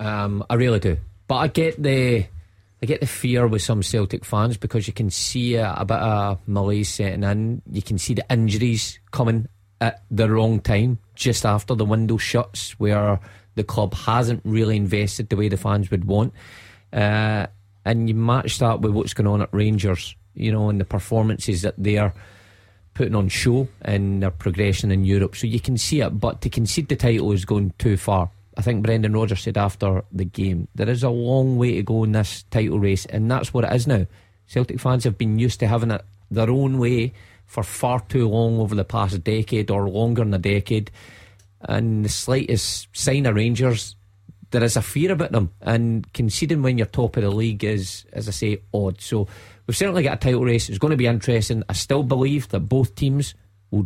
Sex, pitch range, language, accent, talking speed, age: male, 100-120 Hz, English, British, 210 wpm, 30-49